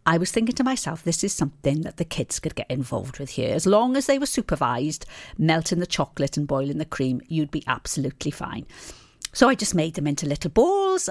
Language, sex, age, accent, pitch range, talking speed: English, female, 50-69, British, 140-190 Hz, 220 wpm